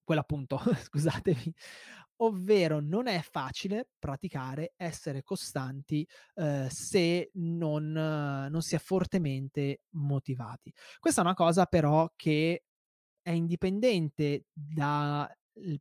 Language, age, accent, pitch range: Italian, 20-39, native, 140-170 Hz